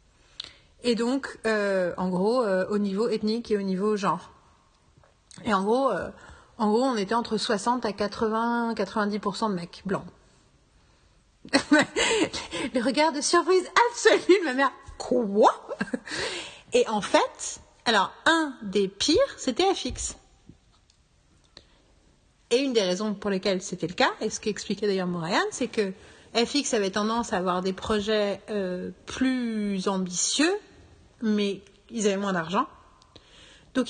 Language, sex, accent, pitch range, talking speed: French, female, French, 195-255 Hz, 135 wpm